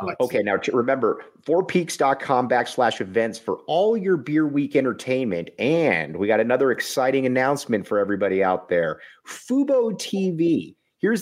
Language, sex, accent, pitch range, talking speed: English, male, American, 125-175 Hz, 135 wpm